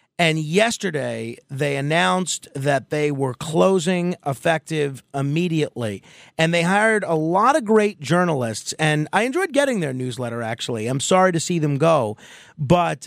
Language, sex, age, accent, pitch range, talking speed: English, male, 40-59, American, 140-190 Hz, 145 wpm